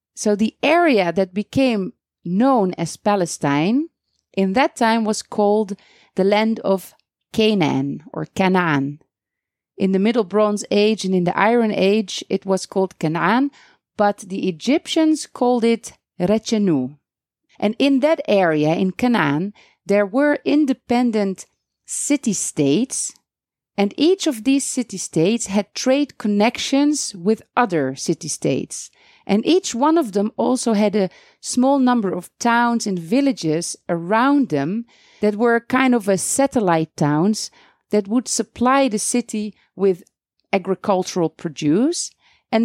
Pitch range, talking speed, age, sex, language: 190-255 Hz, 130 wpm, 40-59, female, English